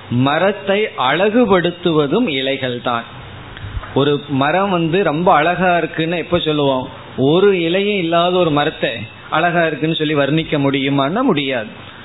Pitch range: 135-175 Hz